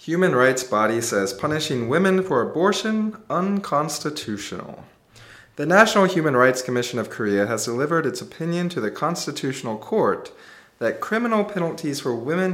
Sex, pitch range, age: male, 105-155 Hz, 20-39